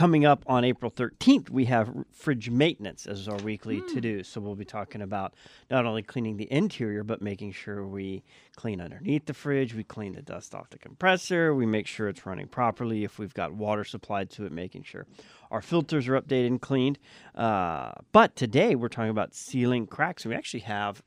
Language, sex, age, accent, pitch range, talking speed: English, male, 40-59, American, 105-130 Hz, 205 wpm